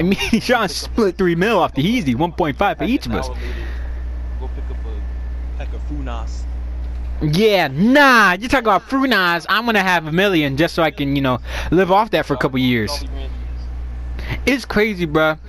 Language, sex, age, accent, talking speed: English, male, 20-39, American, 175 wpm